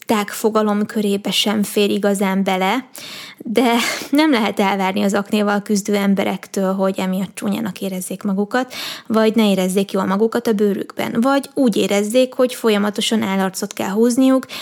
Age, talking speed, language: 20-39, 145 wpm, Hungarian